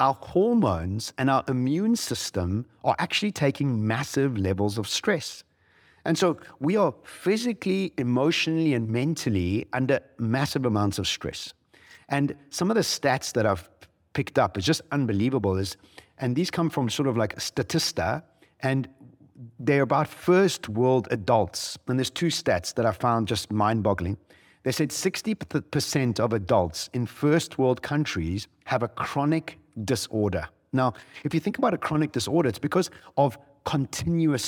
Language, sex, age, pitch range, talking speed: English, male, 50-69, 110-160 Hz, 155 wpm